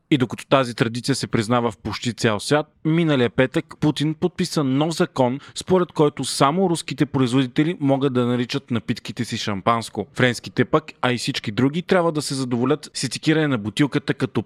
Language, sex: Bulgarian, male